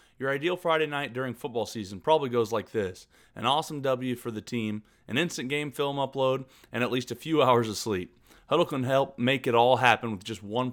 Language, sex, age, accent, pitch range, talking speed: English, male, 30-49, American, 115-150 Hz, 225 wpm